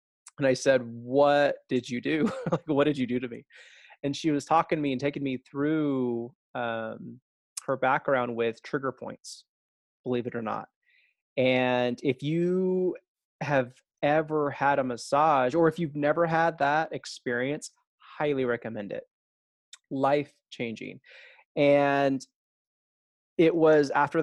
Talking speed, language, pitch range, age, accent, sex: 140 wpm, English, 120-150 Hz, 20-39, American, male